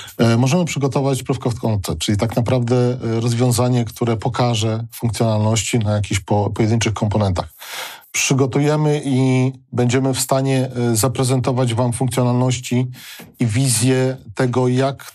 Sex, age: male, 40-59